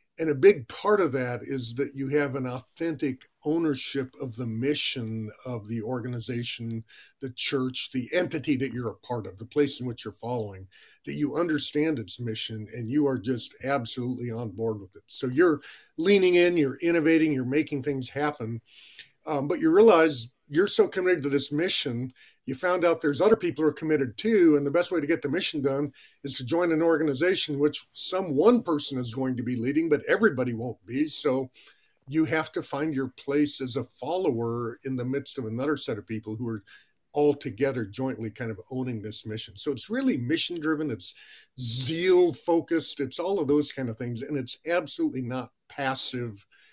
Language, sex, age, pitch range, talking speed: English, male, 50-69, 120-155 Hz, 195 wpm